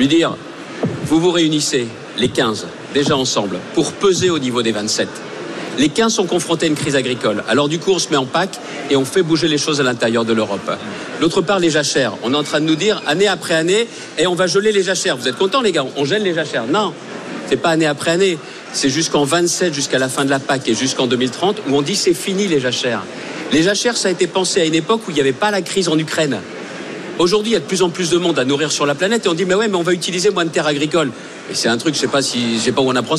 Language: French